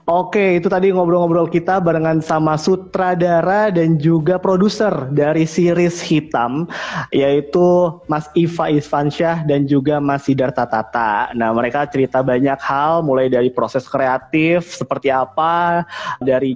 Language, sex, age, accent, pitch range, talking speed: Indonesian, male, 20-39, native, 140-170 Hz, 130 wpm